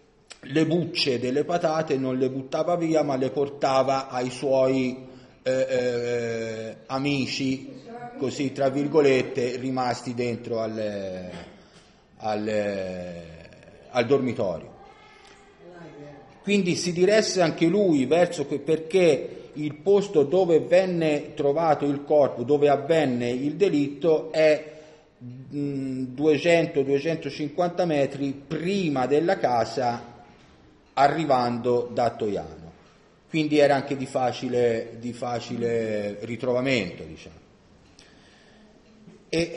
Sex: male